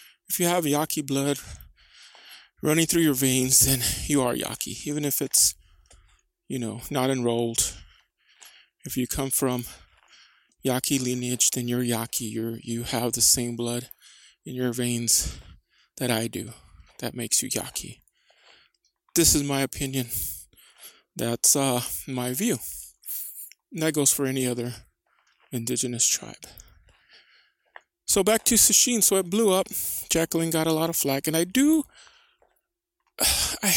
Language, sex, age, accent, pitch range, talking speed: English, male, 20-39, American, 125-190 Hz, 140 wpm